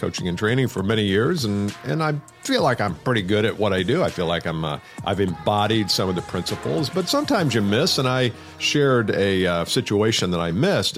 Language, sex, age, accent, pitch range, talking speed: English, male, 50-69, American, 90-125 Hz, 230 wpm